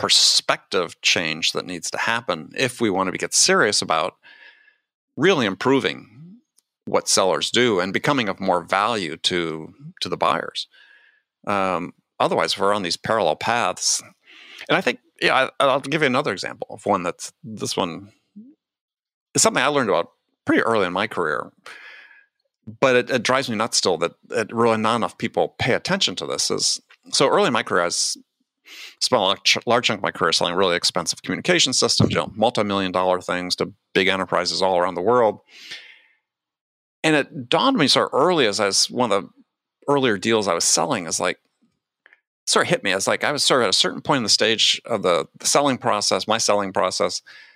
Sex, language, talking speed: male, English, 190 wpm